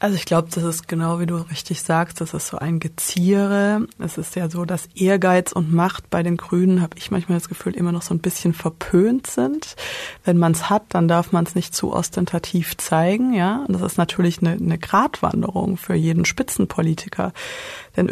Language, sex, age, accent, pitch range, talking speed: German, female, 30-49, German, 170-200 Hz, 200 wpm